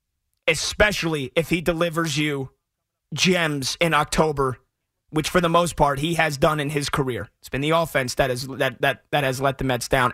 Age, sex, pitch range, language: 30-49, male, 125-165 Hz, English